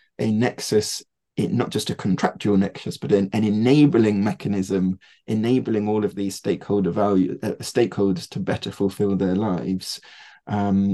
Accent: British